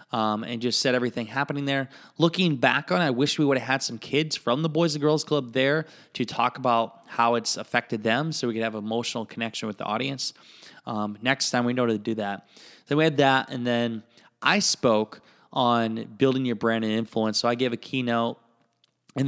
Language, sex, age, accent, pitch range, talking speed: English, male, 20-39, American, 115-135 Hz, 220 wpm